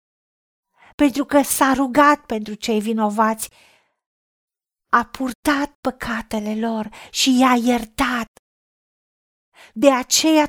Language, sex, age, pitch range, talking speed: Romanian, female, 40-59, 240-300 Hz, 90 wpm